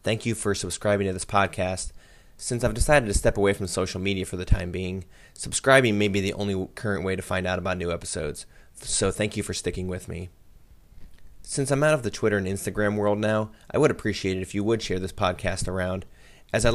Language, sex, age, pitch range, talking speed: English, male, 20-39, 90-105 Hz, 225 wpm